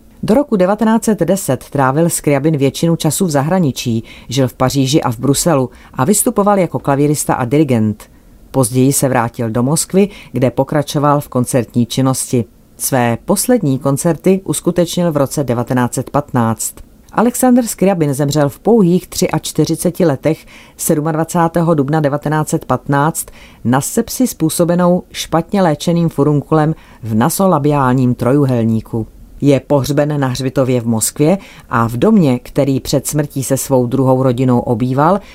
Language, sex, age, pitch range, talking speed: Czech, female, 40-59, 130-165 Hz, 125 wpm